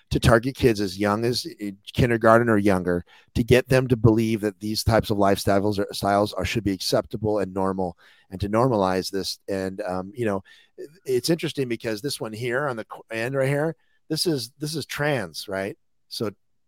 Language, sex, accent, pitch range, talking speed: English, male, American, 95-120 Hz, 190 wpm